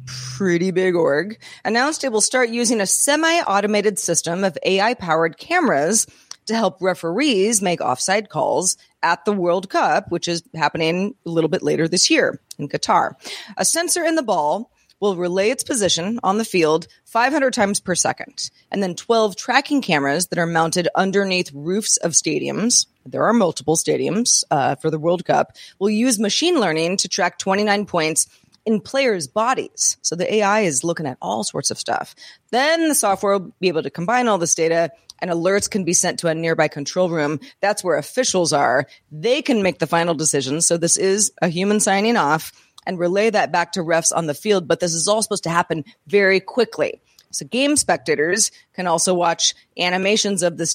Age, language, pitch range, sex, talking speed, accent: 30-49, English, 165-215 Hz, female, 190 wpm, American